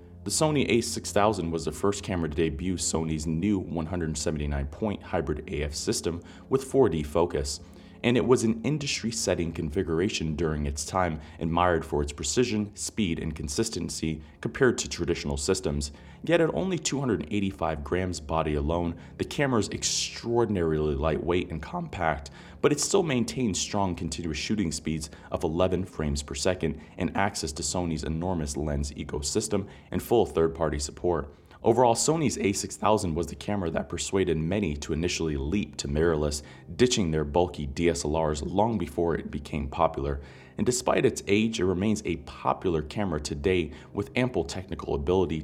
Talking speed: 150 wpm